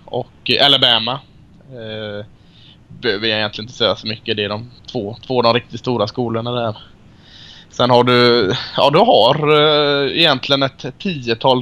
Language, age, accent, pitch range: Swedish, 20-39, Norwegian, 110-130 Hz